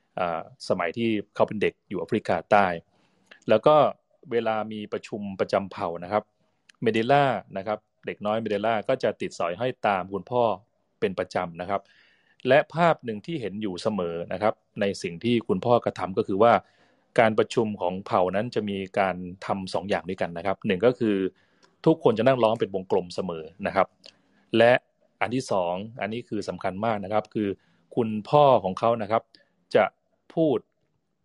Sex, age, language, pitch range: male, 20-39, Thai, 95-120 Hz